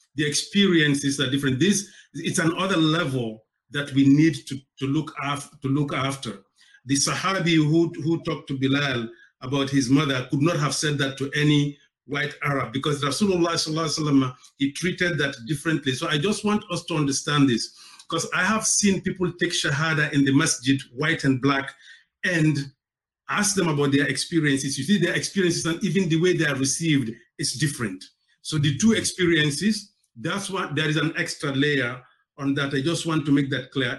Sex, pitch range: male, 140-170 Hz